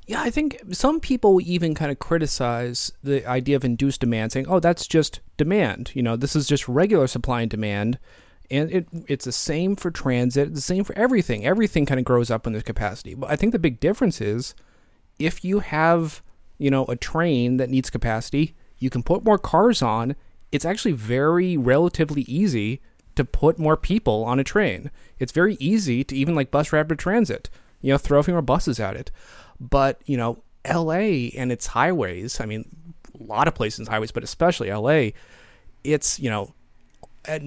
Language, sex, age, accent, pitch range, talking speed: English, male, 30-49, American, 120-165 Hz, 195 wpm